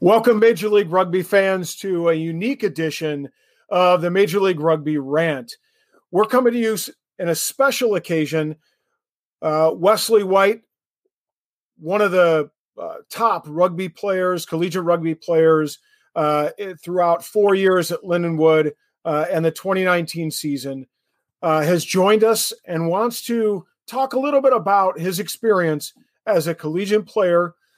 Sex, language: male, English